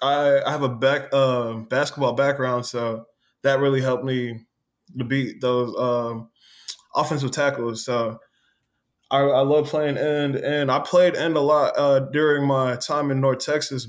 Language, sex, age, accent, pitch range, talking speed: English, male, 20-39, American, 125-140 Hz, 160 wpm